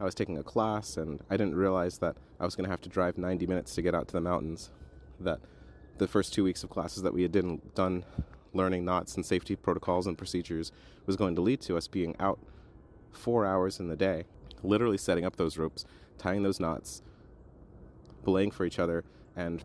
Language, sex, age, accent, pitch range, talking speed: English, male, 30-49, American, 80-100 Hz, 210 wpm